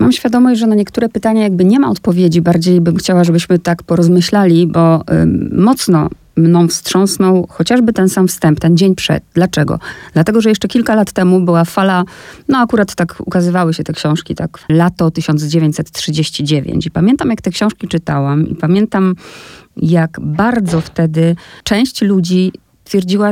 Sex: female